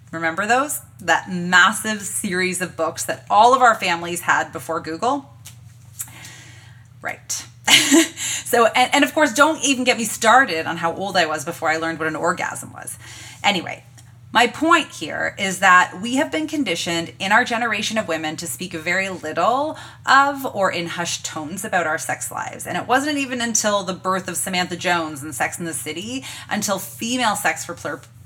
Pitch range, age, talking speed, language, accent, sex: 155-230 Hz, 30-49, 185 wpm, English, American, female